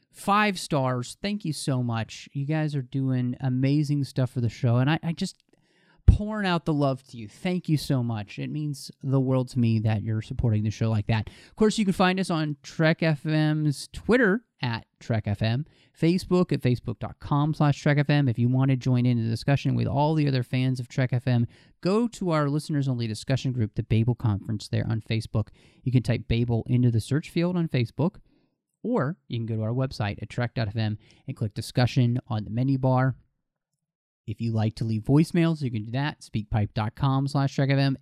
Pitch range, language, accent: 115-145 Hz, English, American